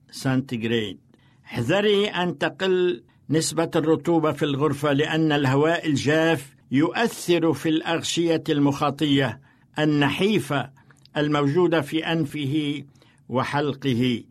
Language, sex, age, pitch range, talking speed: Arabic, male, 60-79, 135-165 Hz, 85 wpm